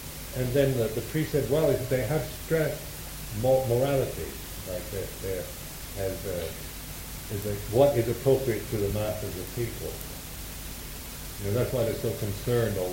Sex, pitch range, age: male, 90-130 Hz, 60-79